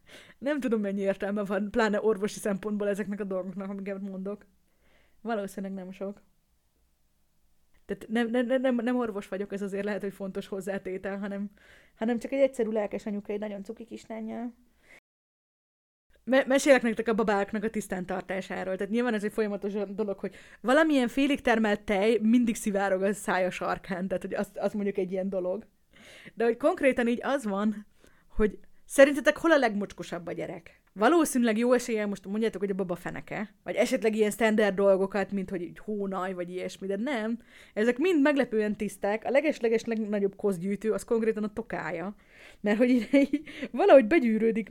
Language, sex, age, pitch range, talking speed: Hungarian, female, 30-49, 195-240 Hz, 160 wpm